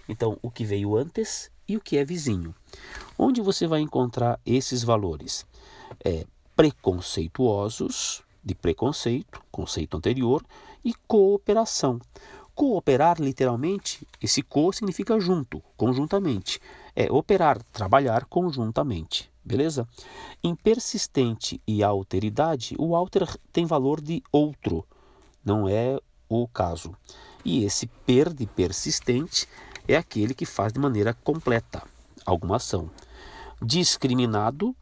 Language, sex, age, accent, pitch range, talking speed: Portuguese, male, 50-69, Brazilian, 100-155 Hz, 110 wpm